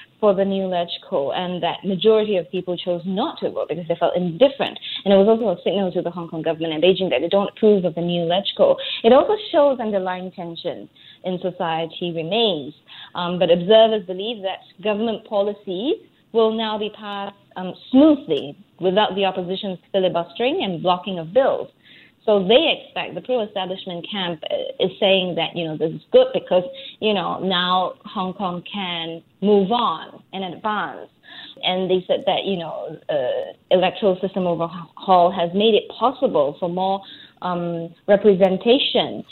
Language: English